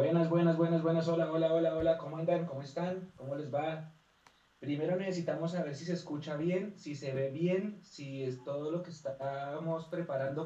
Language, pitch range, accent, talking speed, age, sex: Spanish, 130-165 Hz, Colombian, 190 wpm, 30-49, male